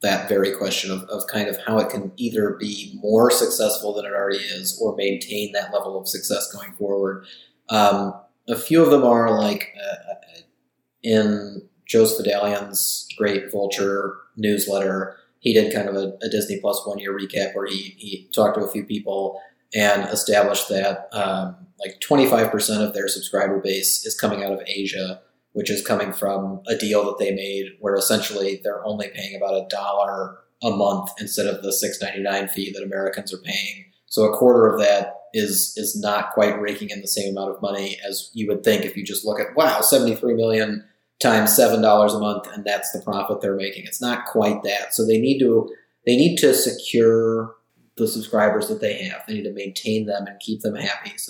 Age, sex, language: 30-49, male, English